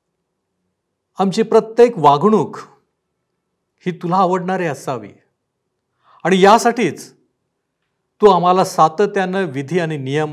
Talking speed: 85 wpm